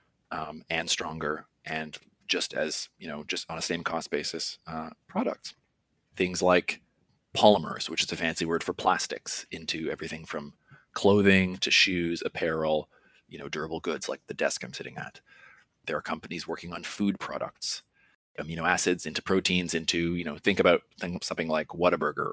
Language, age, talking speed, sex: English, 30-49, 170 wpm, male